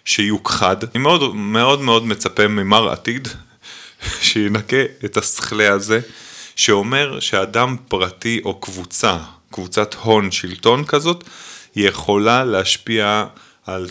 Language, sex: Hebrew, male